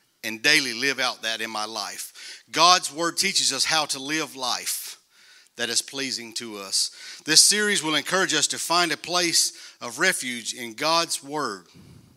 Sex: male